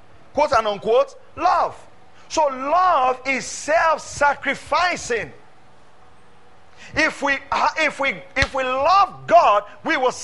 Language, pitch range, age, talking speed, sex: English, 190-310 Hz, 40-59, 105 wpm, male